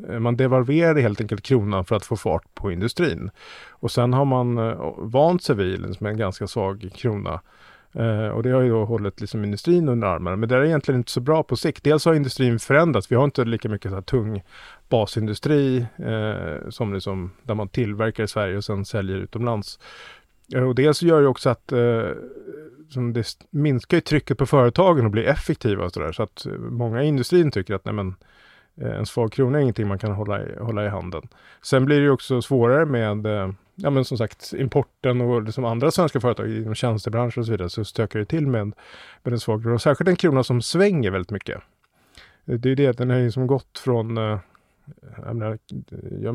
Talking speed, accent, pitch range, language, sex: 200 wpm, Norwegian, 105-135 Hz, English, male